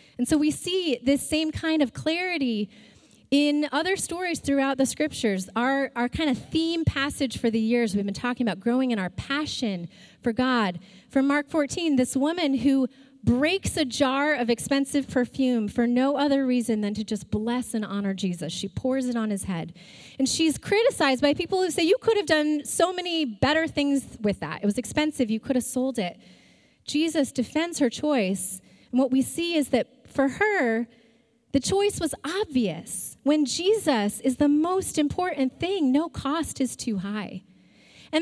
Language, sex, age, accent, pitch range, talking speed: English, female, 30-49, American, 230-305 Hz, 185 wpm